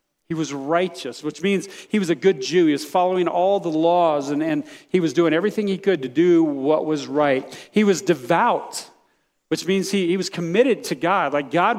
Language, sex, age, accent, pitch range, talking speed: English, male, 40-59, American, 150-190 Hz, 215 wpm